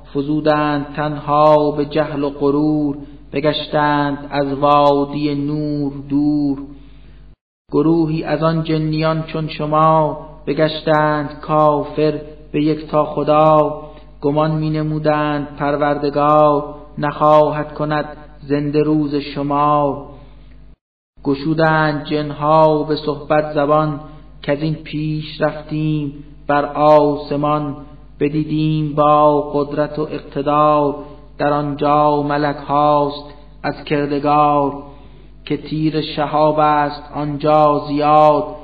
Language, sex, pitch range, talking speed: Persian, male, 145-150 Hz, 95 wpm